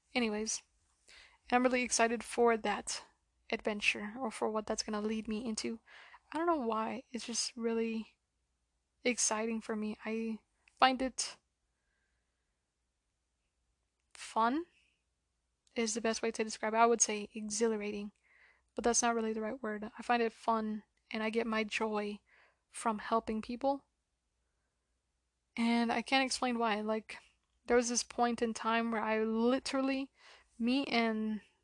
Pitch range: 215-235 Hz